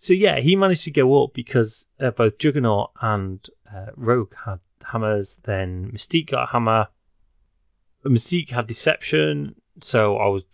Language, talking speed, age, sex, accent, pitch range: English, 155 wpm, 30-49, male, British, 100-140 Hz